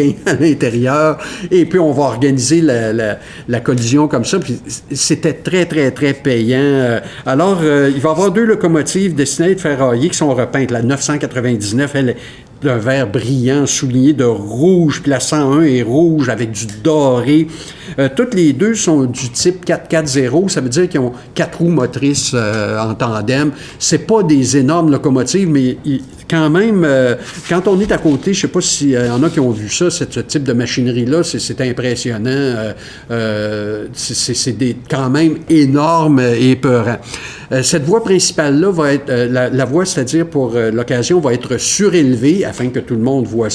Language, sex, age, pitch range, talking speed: French, male, 50-69, 125-160 Hz, 185 wpm